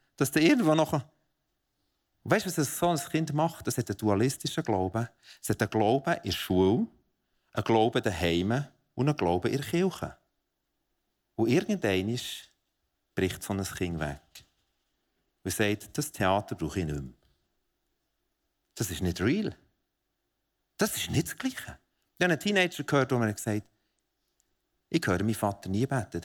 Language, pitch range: German, 90-130 Hz